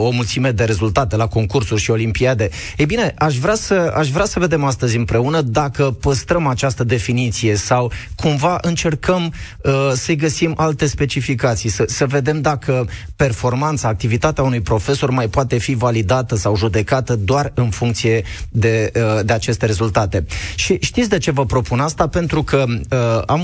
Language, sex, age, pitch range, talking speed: Romanian, male, 20-39, 115-150 Hz, 150 wpm